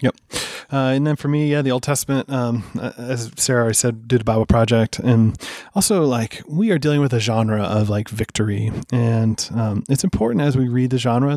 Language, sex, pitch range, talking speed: English, male, 110-135 Hz, 210 wpm